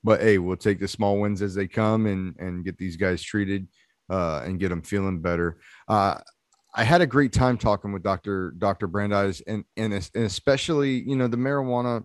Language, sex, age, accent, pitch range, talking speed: English, male, 30-49, American, 100-115 Hz, 200 wpm